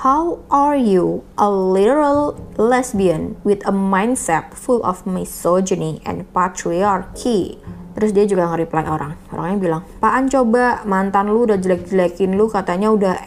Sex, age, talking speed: female, 20-39, 135 wpm